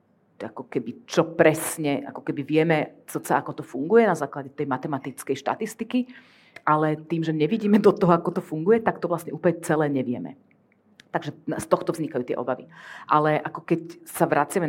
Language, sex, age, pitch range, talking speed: Slovak, female, 30-49, 145-180 Hz, 175 wpm